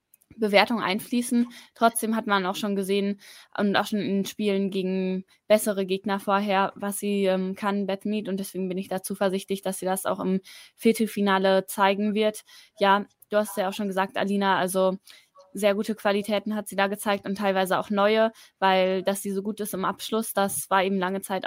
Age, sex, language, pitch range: 20-39, female, German, 195-215 Hz